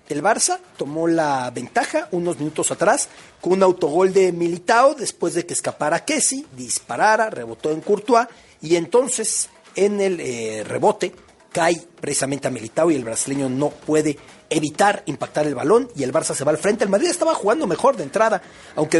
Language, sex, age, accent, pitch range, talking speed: Spanish, male, 40-59, Mexican, 150-230 Hz, 175 wpm